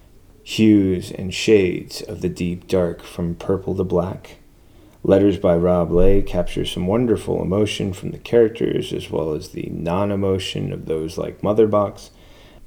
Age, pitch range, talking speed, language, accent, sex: 30-49, 85-100 Hz, 145 wpm, English, American, male